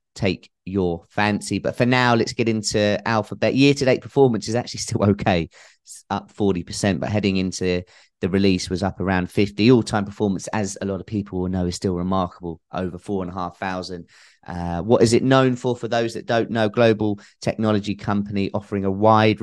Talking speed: 200 wpm